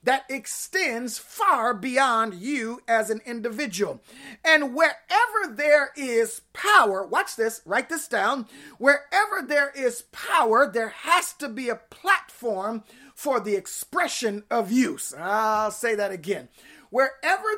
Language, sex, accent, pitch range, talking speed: English, male, American, 225-310 Hz, 130 wpm